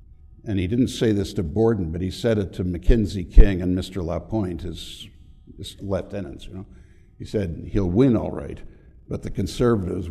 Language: English